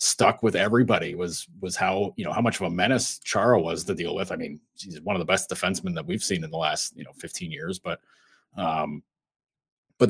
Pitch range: 95-125 Hz